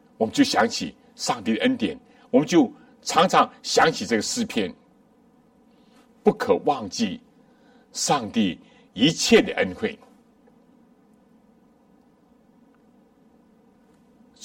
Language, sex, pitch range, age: Chinese, male, 240-250 Hz, 60-79